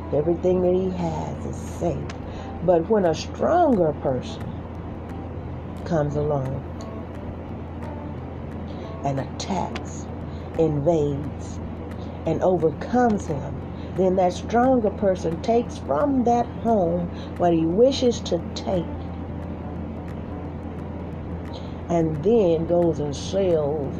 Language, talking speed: English, 95 wpm